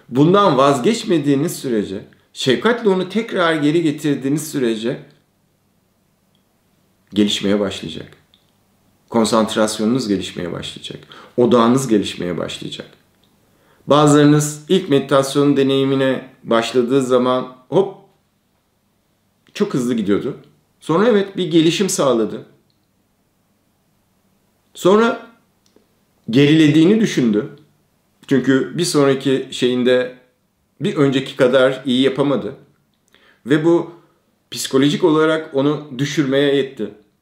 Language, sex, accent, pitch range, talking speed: Turkish, male, native, 125-170 Hz, 80 wpm